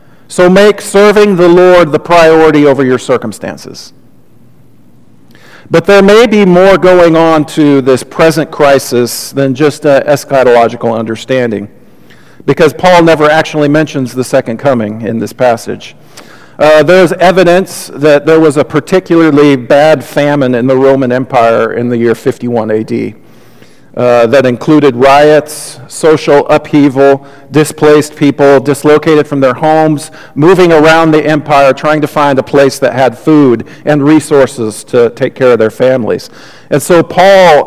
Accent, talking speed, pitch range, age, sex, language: American, 145 wpm, 130-160 Hz, 50-69, male, English